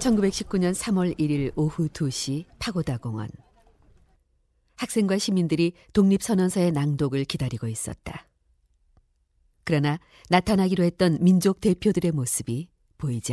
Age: 40-59